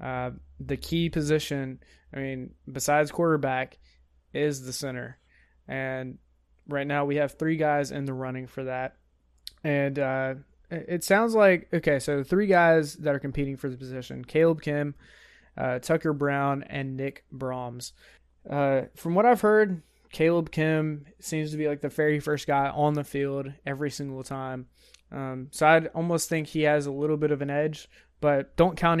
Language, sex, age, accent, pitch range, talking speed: English, male, 20-39, American, 130-155 Hz, 175 wpm